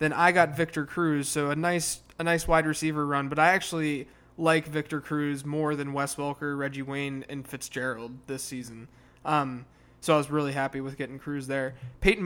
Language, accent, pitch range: English, American, 140-160 Hz